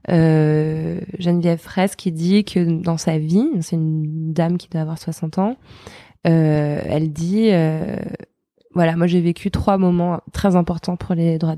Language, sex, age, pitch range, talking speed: French, female, 20-39, 160-185 Hz, 165 wpm